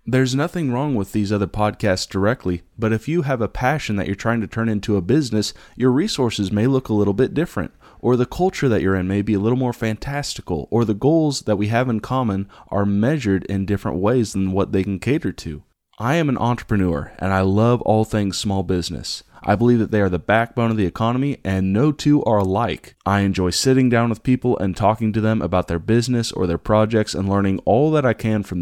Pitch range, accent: 95-125 Hz, American